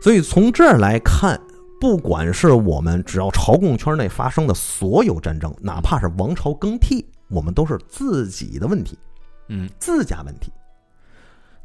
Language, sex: Chinese, male